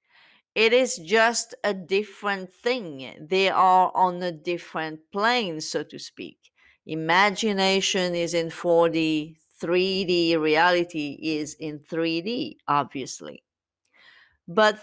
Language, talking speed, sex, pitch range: English, 105 wpm, female, 160-210 Hz